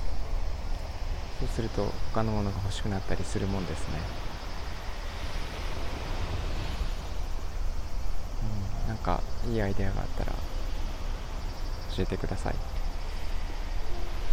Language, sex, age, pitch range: Japanese, male, 20-39, 80-100 Hz